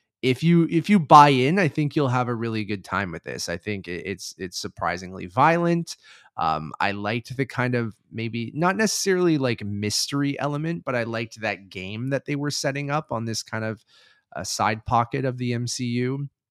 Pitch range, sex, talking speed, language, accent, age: 95-125 Hz, male, 195 wpm, English, American, 20-39